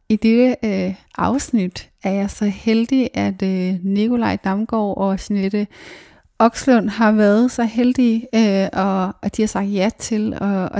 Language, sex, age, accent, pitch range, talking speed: English, female, 30-49, Danish, 195-220 Hz, 160 wpm